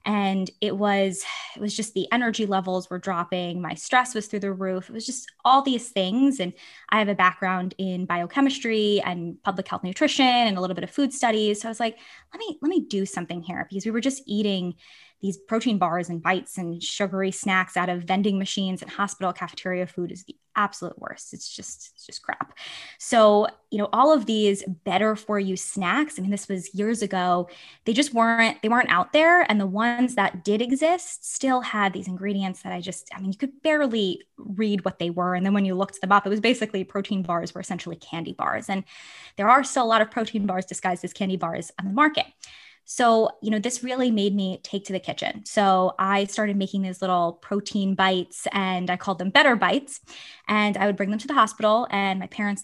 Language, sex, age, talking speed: English, female, 10-29, 225 wpm